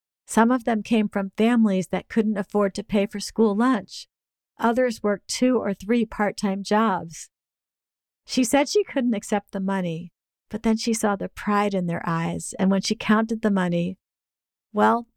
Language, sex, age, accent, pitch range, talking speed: English, female, 50-69, American, 175-220 Hz, 175 wpm